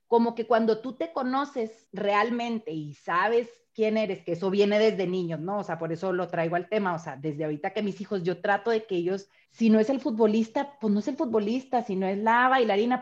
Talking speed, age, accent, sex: 240 wpm, 30-49, Mexican, female